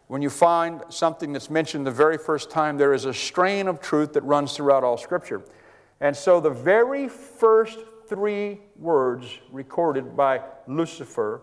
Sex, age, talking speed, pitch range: male, 50-69, 165 wpm, 145-215 Hz